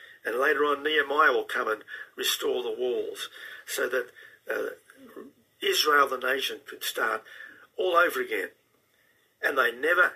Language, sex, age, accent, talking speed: English, male, 50-69, Australian, 140 wpm